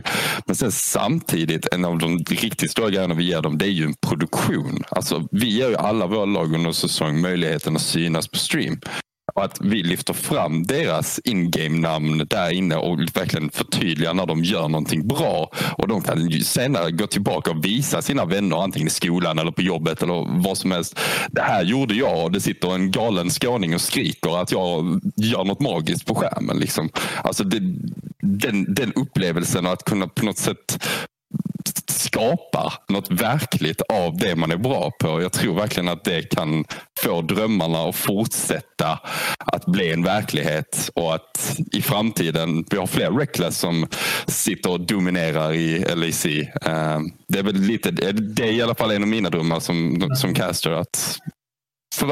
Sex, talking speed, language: male, 175 wpm, English